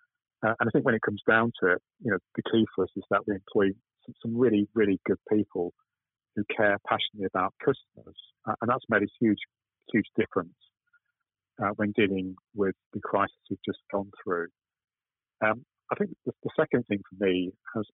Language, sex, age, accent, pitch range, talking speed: English, male, 40-59, British, 95-115 Hz, 195 wpm